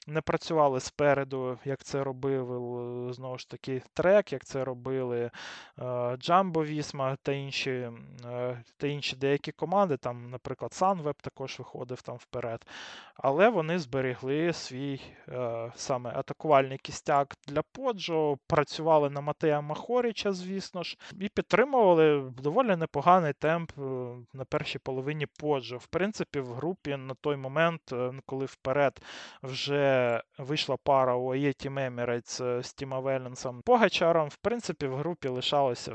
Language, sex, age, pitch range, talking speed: Ukrainian, male, 20-39, 130-160 Hz, 130 wpm